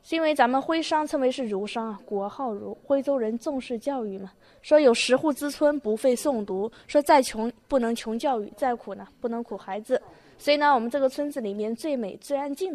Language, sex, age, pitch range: Chinese, female, 20-39, 215-275 Hz